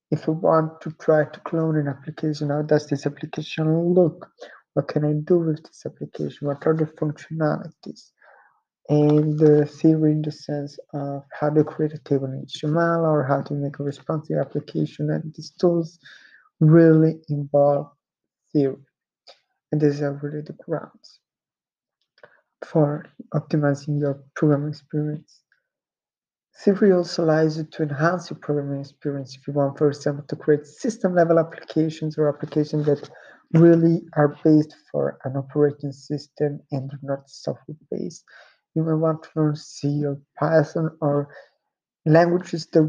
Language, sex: English, male